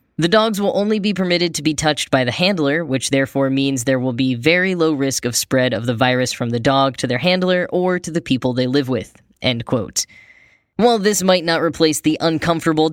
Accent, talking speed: American, 220 wpm